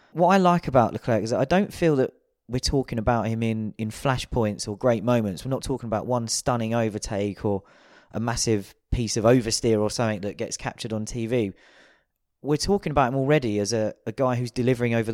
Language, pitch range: English, 100-125 Hz